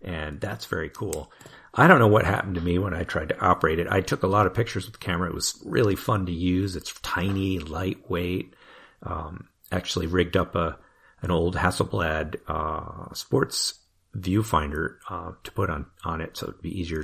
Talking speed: 195 wpm